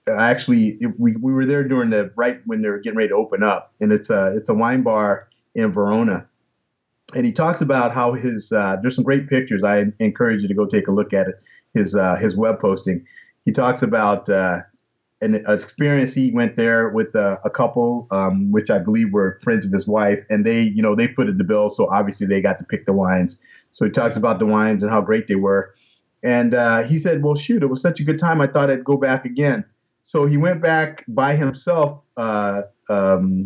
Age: 30-49